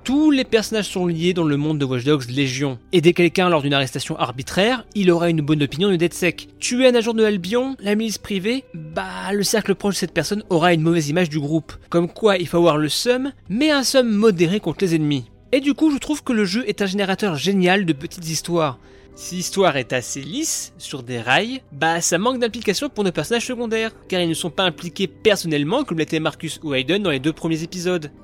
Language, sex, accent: French, male, French